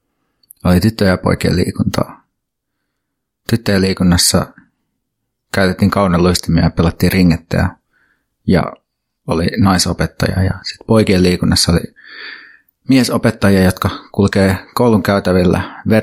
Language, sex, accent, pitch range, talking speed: Finnish, male, native, 90-105 Hz, 95 wpm